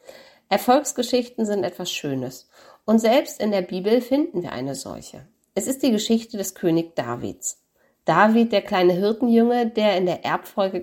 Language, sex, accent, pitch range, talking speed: German, female, German, 175-225 Hz, 155 wpm